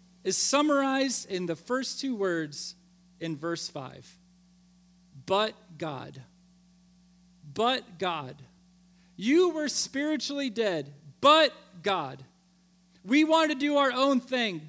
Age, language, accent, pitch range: 40-59, English, American, 180-255 Hz